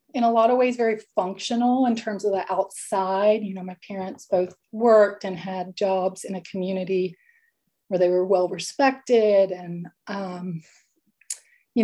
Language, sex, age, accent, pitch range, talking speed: English, female, 30-49, American, 185-225 Hz, 155 wpm